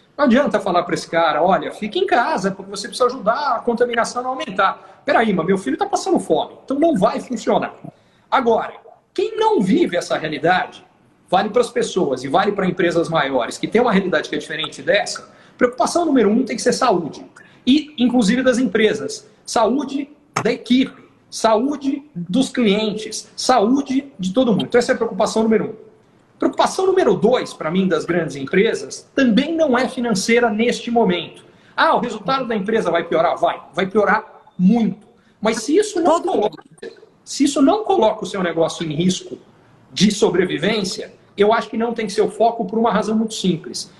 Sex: male